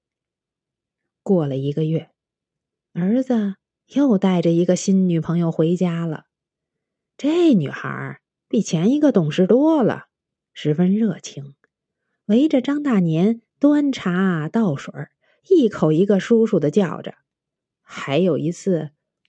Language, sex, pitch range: Chinese, female, 155-235 Hz